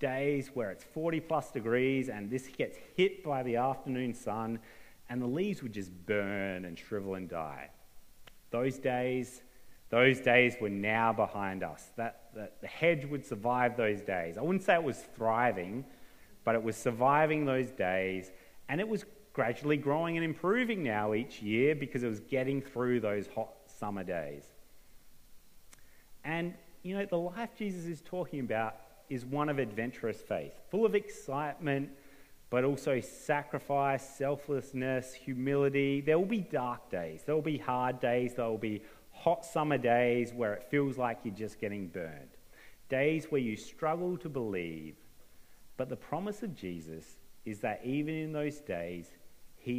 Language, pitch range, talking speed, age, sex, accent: English, 105-145 Hz, 165 wpm, 30-49, male, Australian